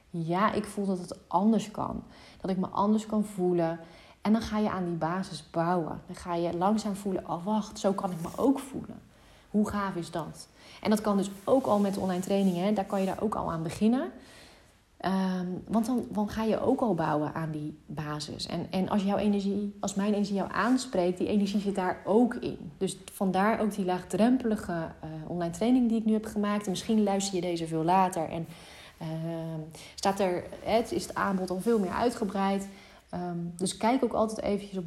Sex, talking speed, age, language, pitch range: female, 210 wpm, 30-49, Dutch, 175-215 Hz